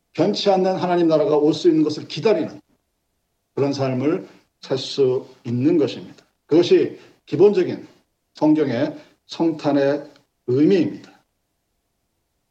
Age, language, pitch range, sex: 50-69, Korean, 145-205 Hz, male